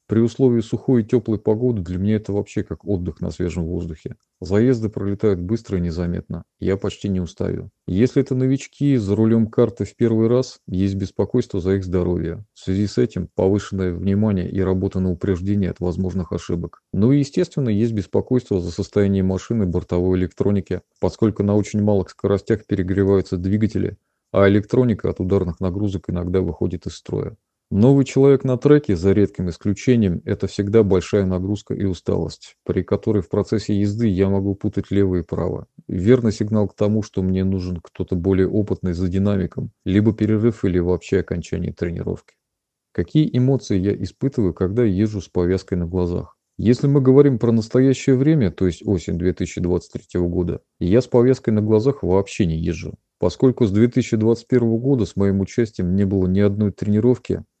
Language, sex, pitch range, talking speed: Russian, male, 95-115 Hz, 165 wpm